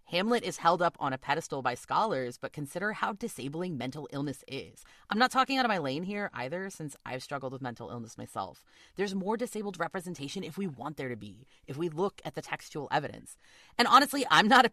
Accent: American